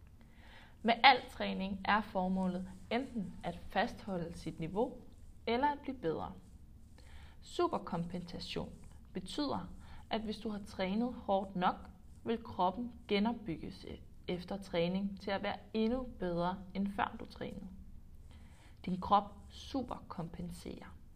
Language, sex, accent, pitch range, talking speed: Danish, female, native, 165-225 Hz, 115 wpm